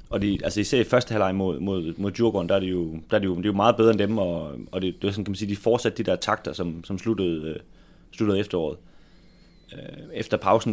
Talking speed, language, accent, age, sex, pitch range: 250 wpm, Danish, native, 30-49, male, 85-105 Hz